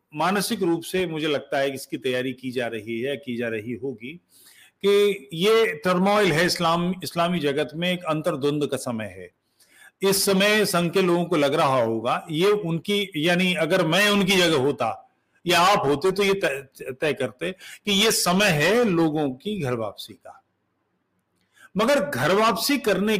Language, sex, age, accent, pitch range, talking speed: English, male, 40-59, Indian, 155-210 Hz, 165 wpm